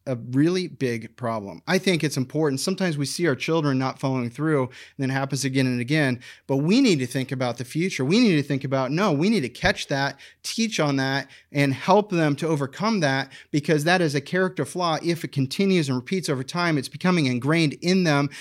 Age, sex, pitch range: 30-49, male, 135-170 Hz